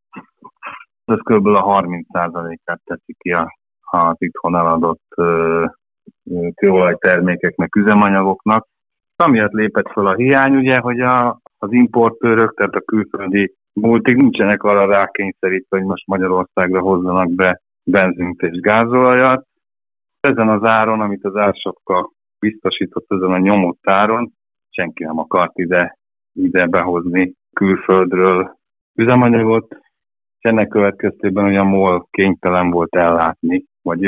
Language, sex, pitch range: Hungarian, male, 90-105 Hz